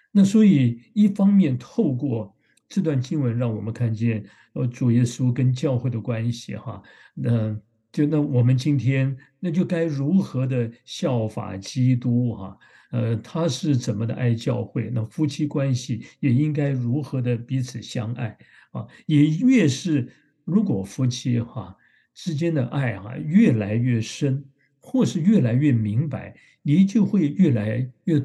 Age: 60-79